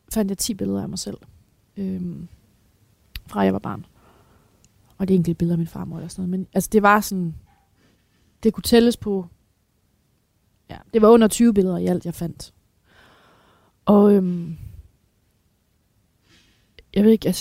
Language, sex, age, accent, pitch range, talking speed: Danish, female, 30-49, native, 170-205 Hz, 160 wpm